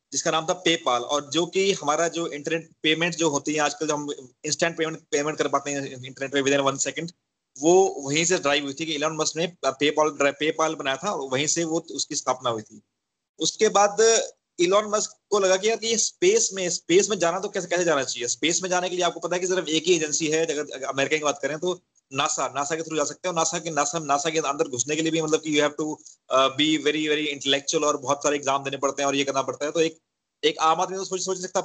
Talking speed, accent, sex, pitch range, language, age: 230 wpm, native, male, 145-180 Hz, Hindi, 30-49